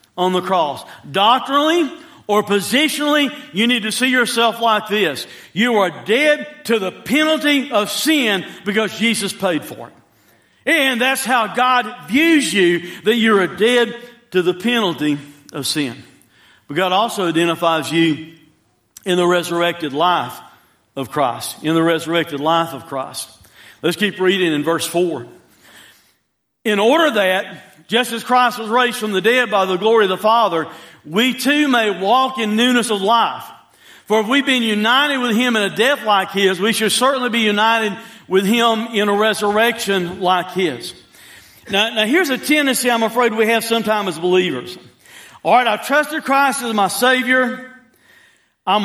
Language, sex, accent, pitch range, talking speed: English, male, American, 185-250 Hz, 165 wpm